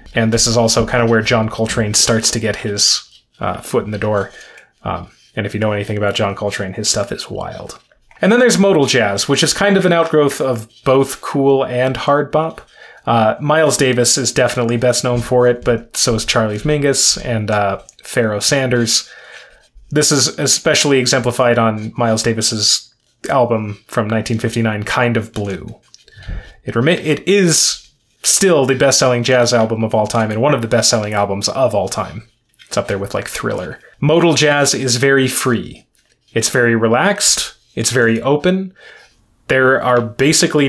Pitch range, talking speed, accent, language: 110-140 Hz, 175 wpm, American, English